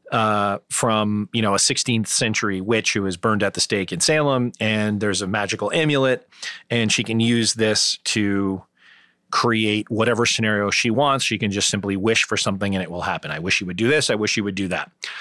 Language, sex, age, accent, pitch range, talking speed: English, male, 30-49, American, 105-125 Hz, 215 wpm